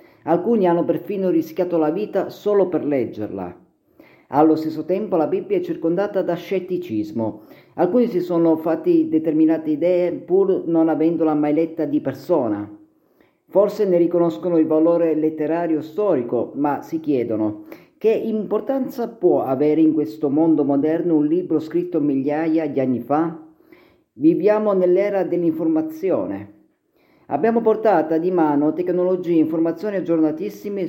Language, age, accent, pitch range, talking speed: Italian, 40-59, native, 150-195 Hz, 130 wpm